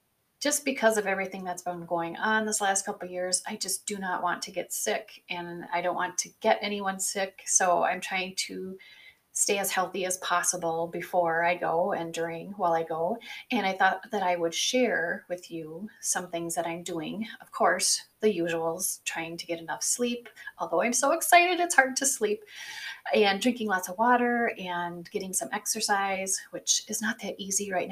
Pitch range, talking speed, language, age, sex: 175-220 Hz, 200 wpm, English, 30-49, female